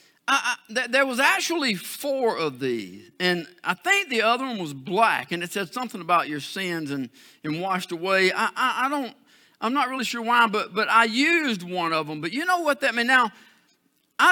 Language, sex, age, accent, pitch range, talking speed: English, male, 50-69, American, 185-235 Hz, 220 wpm